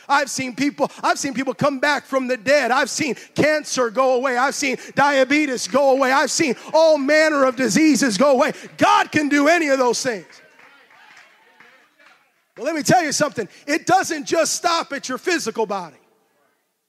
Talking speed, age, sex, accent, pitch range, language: 180 wpm, 30-49, male, American, 265-330 Hz, English